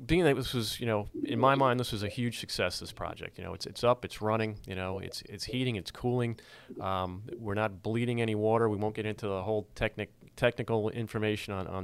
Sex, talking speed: male, 240 wpm